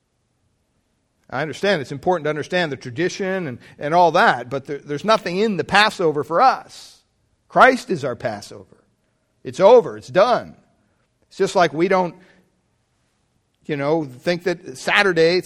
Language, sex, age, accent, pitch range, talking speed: English, male, 50-69, American, 130-185 Hz, 150 wpm